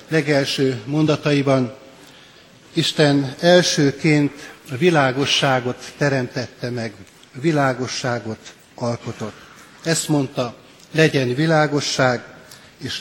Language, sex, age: Hungarian, male, 60-79